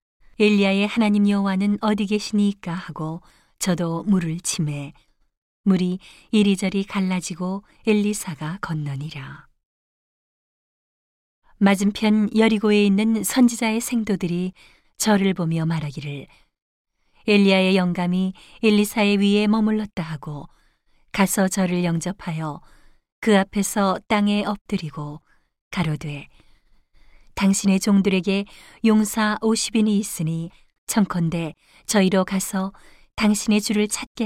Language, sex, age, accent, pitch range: Korean, female, 40-59, native, 170-210 Hz